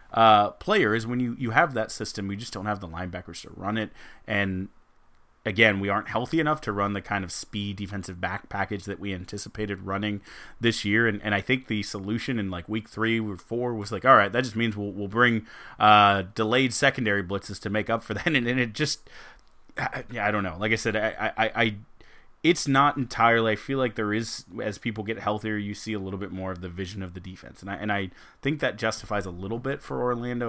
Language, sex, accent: English, male, American